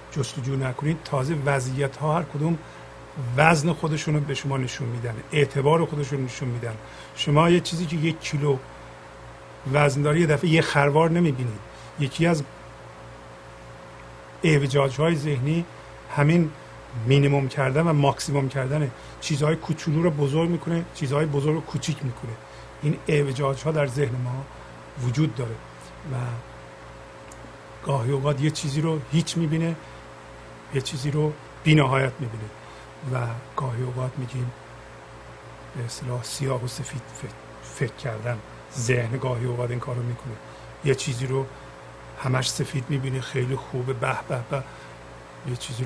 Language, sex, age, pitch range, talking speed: Persian, male, 50-69, 110-145 Hz, 135 wpm